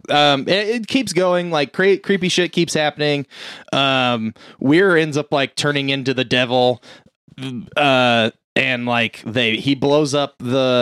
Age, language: 20-39, English